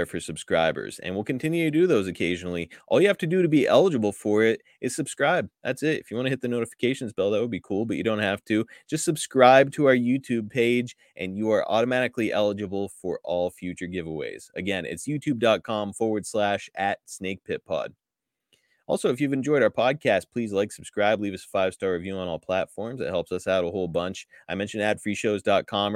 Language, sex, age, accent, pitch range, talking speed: English, male, 30-49, American, 95-120 Hz, 210 wpm